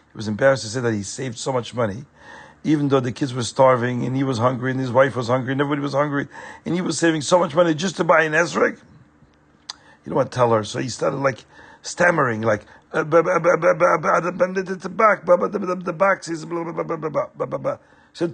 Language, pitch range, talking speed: English, 125-185 Hz, 190 wpm